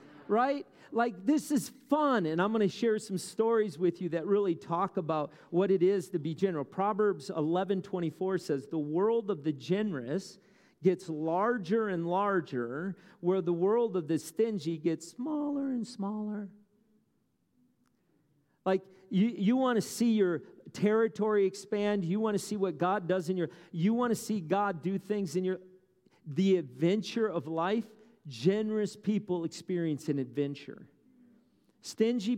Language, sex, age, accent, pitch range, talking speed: English, male, 40-59, American, 155-205 Hz, 155 wpm